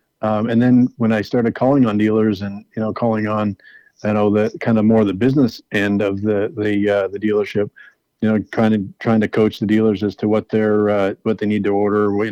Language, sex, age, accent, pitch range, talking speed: English, male, 40-59, American, 100-110 Hz, 245 wpm